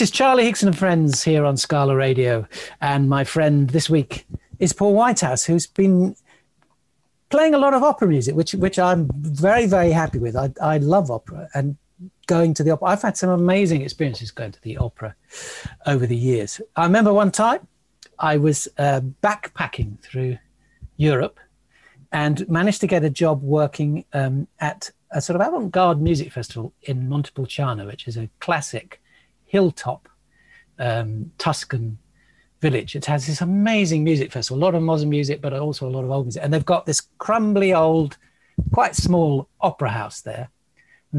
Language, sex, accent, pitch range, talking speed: English, male, British, 130-175 Hz, 175 wpm